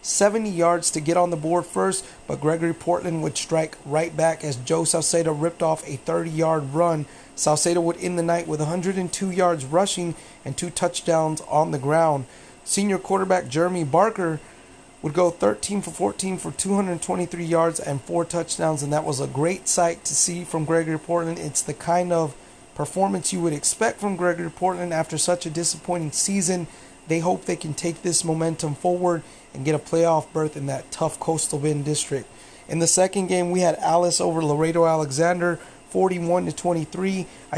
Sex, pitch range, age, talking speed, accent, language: male, 160-175 Hz, 30-49, 180 wpm, American, English